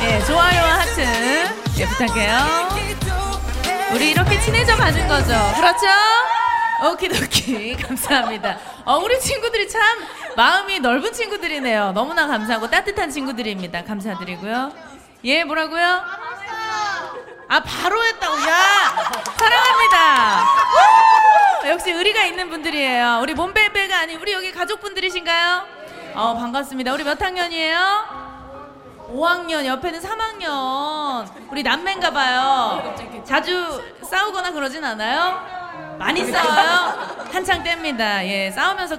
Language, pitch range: Korean, 260-375 Hz